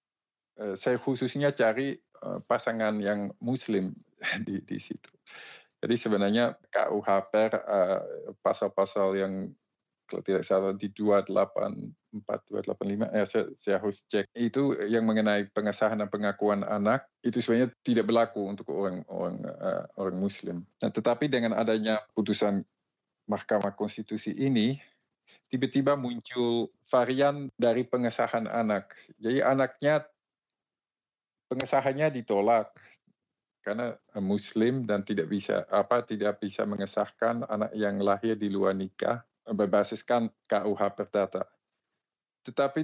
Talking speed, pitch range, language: 110 wpm, 105-125 Hz, Indonesian